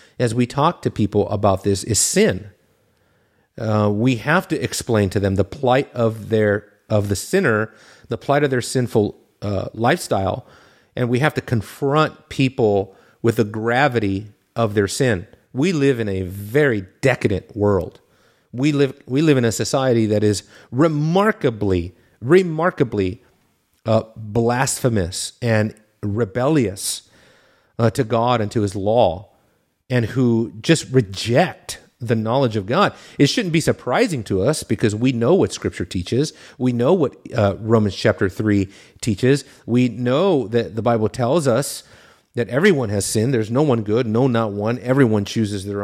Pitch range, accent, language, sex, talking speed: 105-135 Hz, American, English, male, 155 wpm